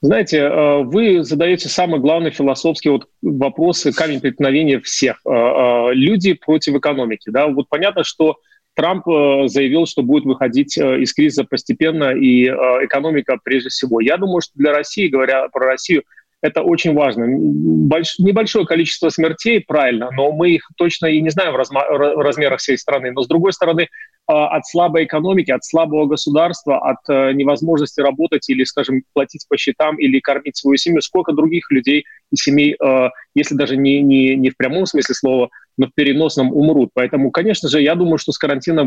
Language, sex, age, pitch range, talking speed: Russian, male, 30-49, 135-165 Hz, 160 wpm